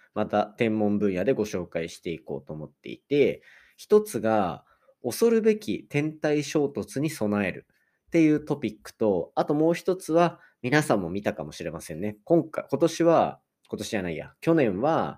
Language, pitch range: Japanese, 100-155 Hz